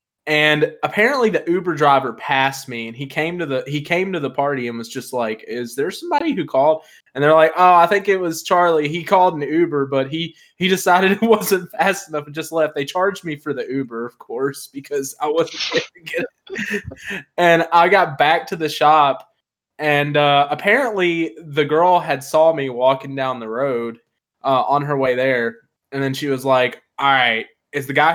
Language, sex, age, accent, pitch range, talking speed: English, male, 20-39, American, 135-180 Hz, 205 wpm